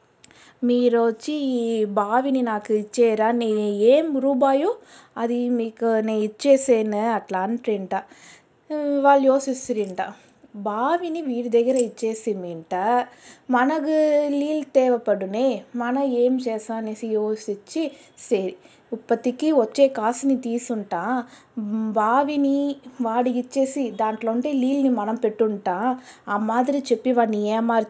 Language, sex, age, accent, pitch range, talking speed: Telugu, female, 20-39, native, 220-265 Hz, 95 wpm